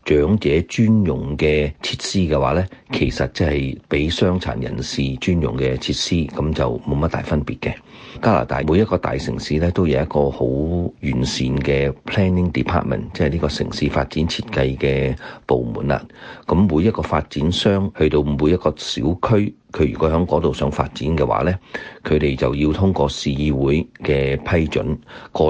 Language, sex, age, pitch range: Chinese, male, 40-59, 70-90 Hz